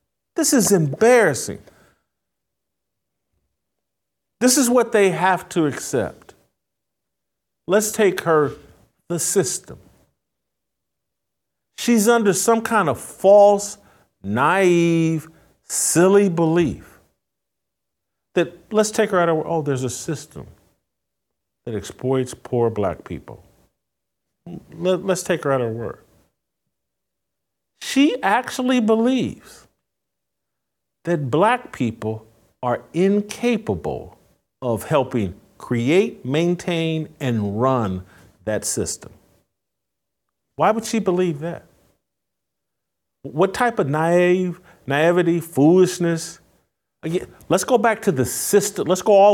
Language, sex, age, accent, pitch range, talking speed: English, male, 50-69, American, 120-190 Hz, 100 wpm